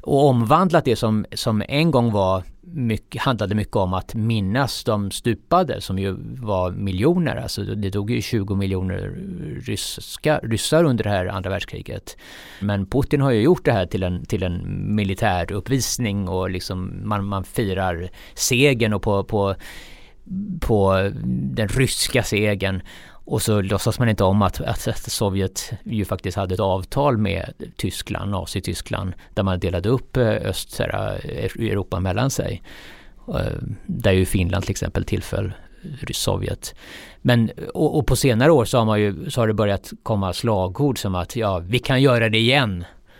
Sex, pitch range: male, 95-125 Hz